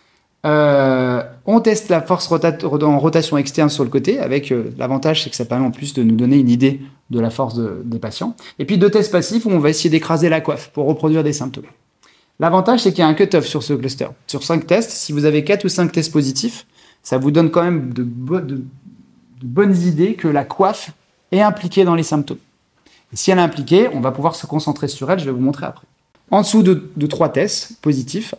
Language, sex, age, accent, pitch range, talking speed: French, male, 30-49, French, 140-190 Hz, 235 wpm